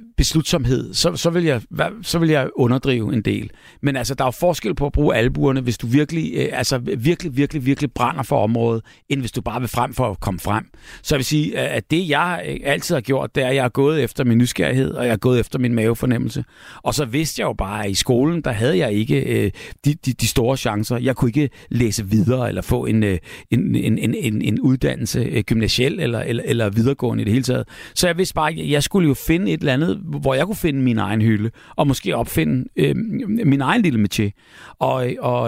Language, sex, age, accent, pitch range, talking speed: Danish, male, 60-79, native, 115-145 Hz, 230 wpm